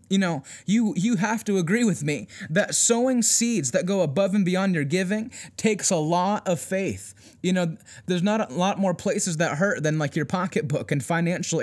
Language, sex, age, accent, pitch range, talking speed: English, male, 20-39, American, 175-215 Hz, 205 wpm